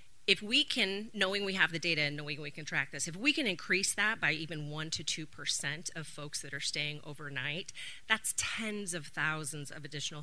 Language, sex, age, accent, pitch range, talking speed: English, female, 30-49, American, 150-195 Hz, 215 wpm